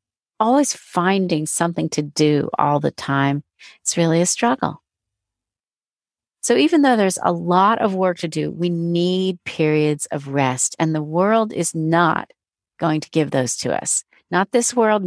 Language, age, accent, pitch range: English, 40-59, American, 155-215 Hz